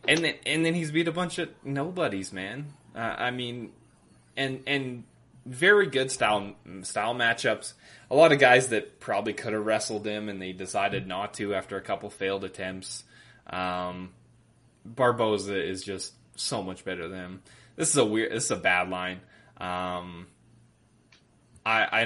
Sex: male